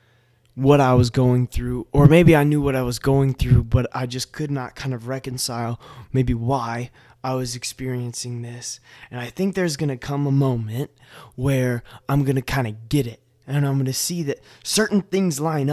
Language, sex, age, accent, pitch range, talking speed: English, male, 20-39, American, 120-140 Hz, 205 wpm